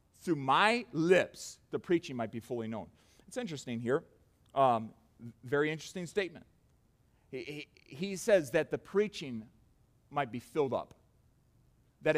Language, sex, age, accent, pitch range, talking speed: English, male, 40-59, American, 140-230 Hz, 135 wpm